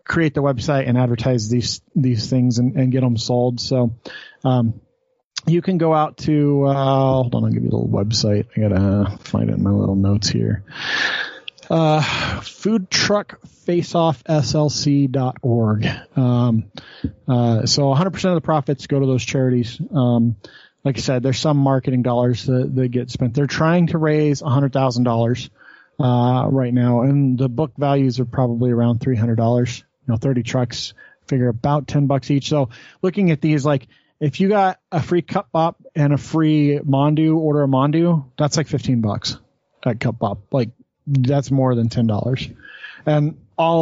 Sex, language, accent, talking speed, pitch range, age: male, English, American, 180 wpm, 120-150 Hz, 30-49